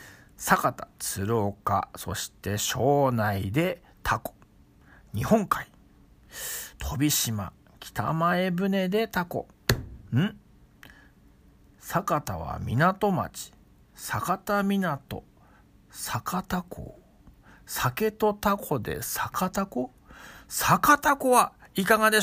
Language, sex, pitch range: Japanese, male, 120-185 Hz